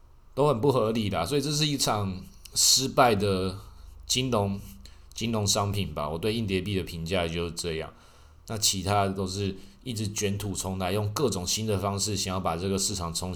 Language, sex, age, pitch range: Chinese, male, 20-39, 90-115 Hz